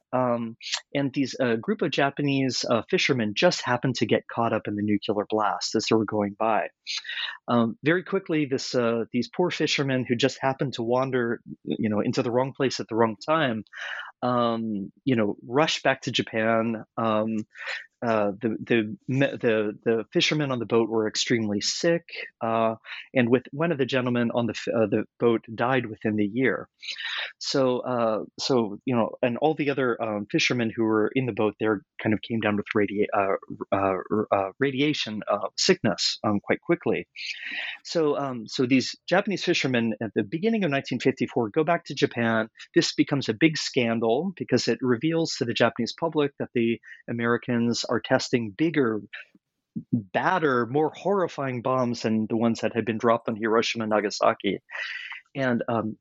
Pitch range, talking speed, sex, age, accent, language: 110-135 Hz, 175 wpm, male, 30-49, American, English